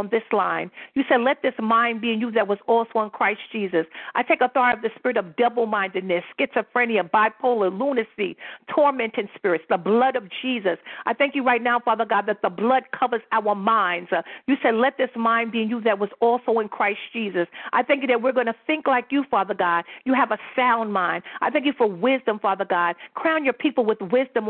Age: 50-69